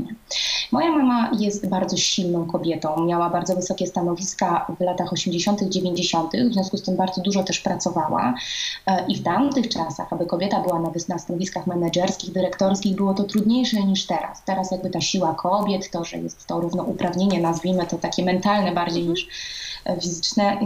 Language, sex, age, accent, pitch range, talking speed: Polish, female, 20-39, native, 175-205 Hz, 165 wpm